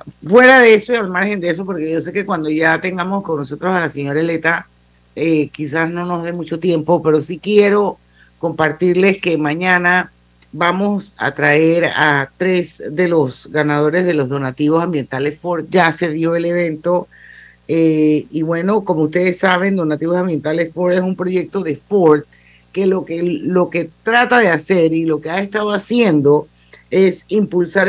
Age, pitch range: 50-69, 155-185 Hz